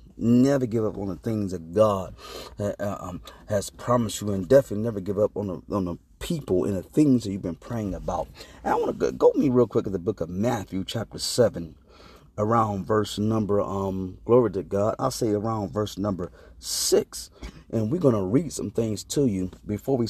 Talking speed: 215 wpm